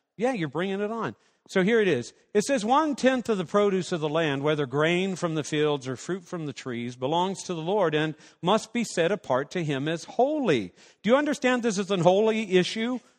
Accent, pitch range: American, 170-235 Hz